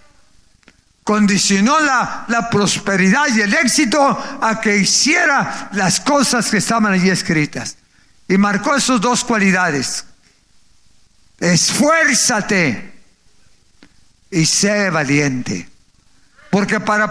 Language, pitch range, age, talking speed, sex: Spanish, 185-270 Hz, 50-69, 95 wpm, male